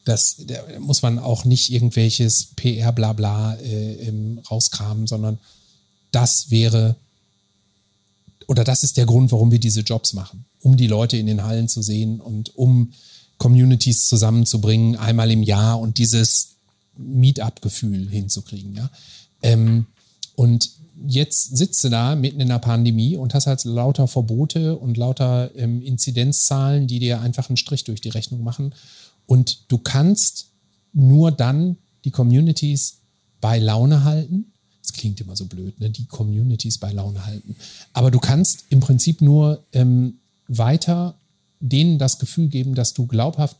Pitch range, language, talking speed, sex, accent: 110-140 Hz, German, 145 wpm, male, German